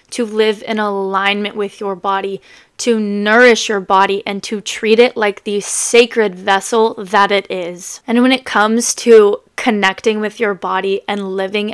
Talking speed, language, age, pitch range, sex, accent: 170 wpm, English, 20-39, 200-235 Hz, female, American